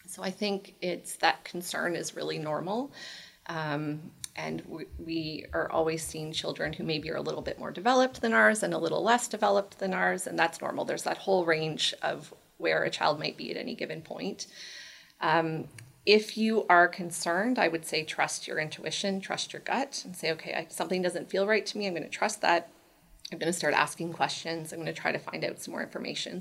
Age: 30-49